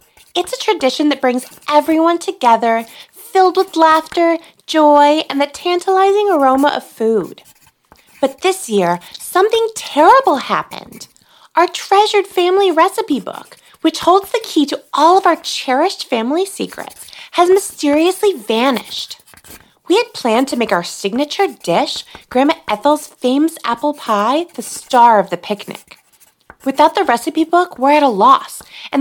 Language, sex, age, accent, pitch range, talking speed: English, female, 20-39, American, 255-355 Hz, 145 wpm